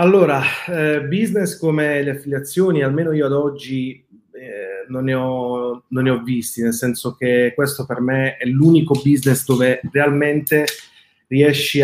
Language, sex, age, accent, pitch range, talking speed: Italian, male, 30-49, native, 125-155 Hz, 140 wpm